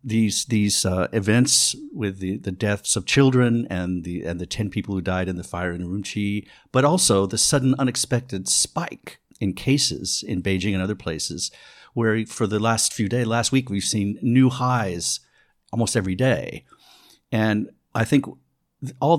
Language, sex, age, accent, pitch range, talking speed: English, male, 50-69, American, 95-120 Hz, 170 wpm